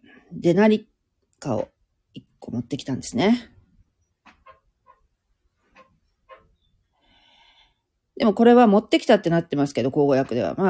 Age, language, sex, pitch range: 40-59, Japanese, female, 120-200 Hz